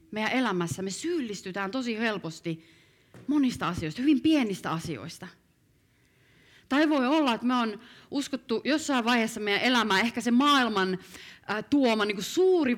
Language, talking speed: Finnish, 130 wpm